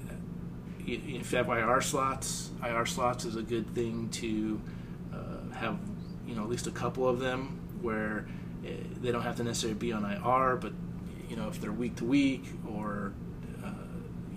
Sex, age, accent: male, 30-49, American